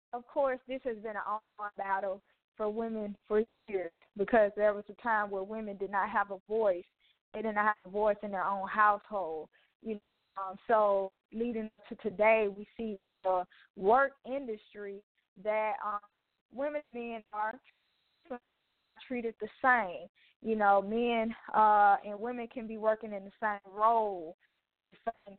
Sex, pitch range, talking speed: female, 200-225 Hz, 170 wpm